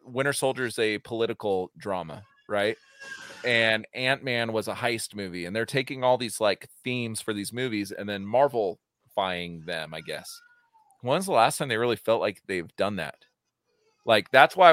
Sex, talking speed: male, 185 wpm